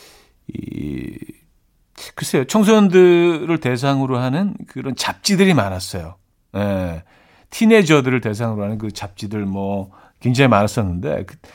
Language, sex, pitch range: Korean, male, 110-160 Hz